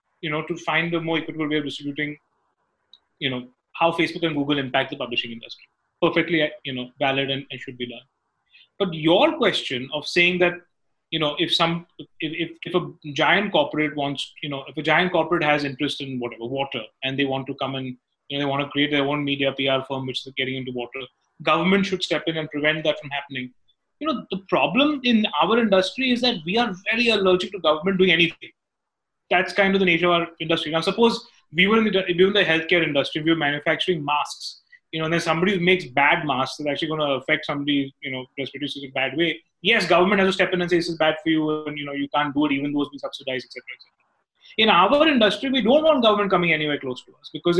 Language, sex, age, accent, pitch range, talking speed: English, male, 30-49, Indian, 140-185 Hz, 240 wpm